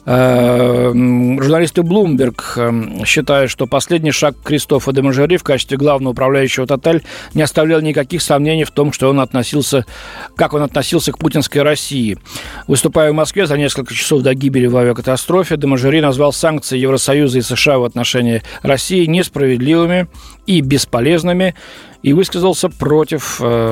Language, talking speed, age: Russian, 140 wpm, 40-59